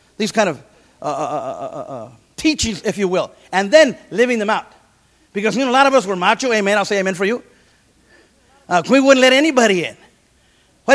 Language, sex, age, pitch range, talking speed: English, male, 30-49, 205-275 Hz, 220 wpm